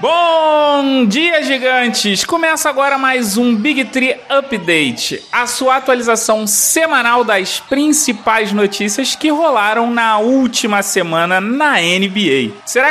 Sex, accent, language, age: male, Brazilian, Portuguese, 30-49